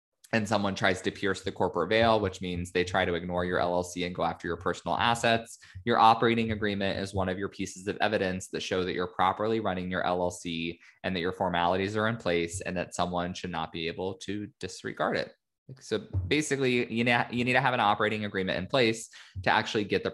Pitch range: 90-115 Hz